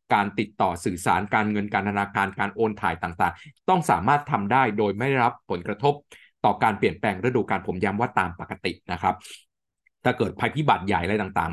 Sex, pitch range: male, 95-125 Hz